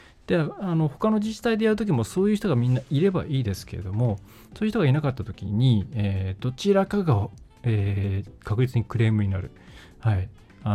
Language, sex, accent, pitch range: Japanese, male, native, 100-140 Hz